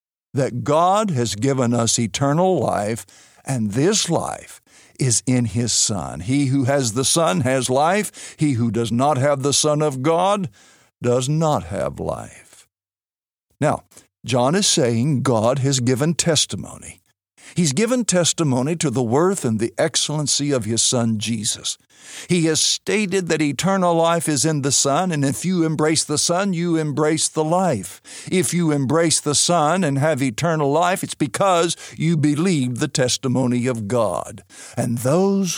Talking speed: 160 wpm